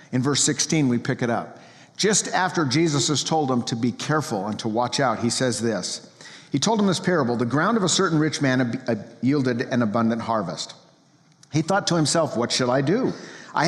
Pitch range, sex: 115-155 Hz, male